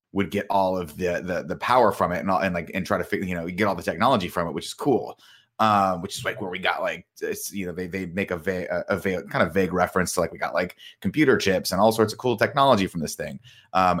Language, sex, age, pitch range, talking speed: English, male, 30-49, 90-100 Hz, 295 wpm